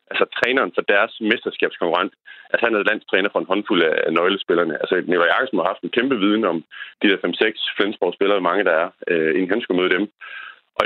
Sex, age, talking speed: male, 30-49, 205 wpm